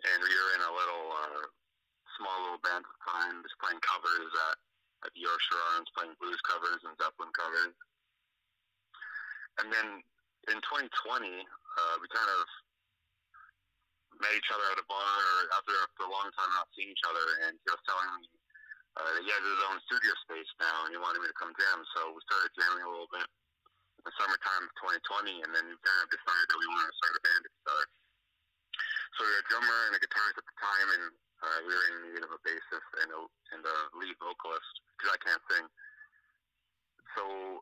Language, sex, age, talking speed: English, male, 30-49, 200 wpm